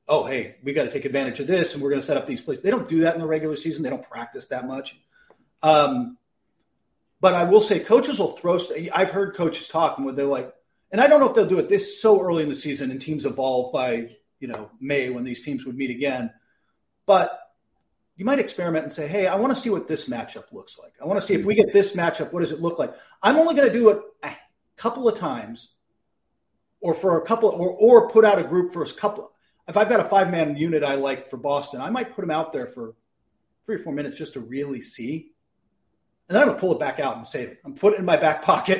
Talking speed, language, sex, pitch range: 265 wpm, English, male, 150-215 Hz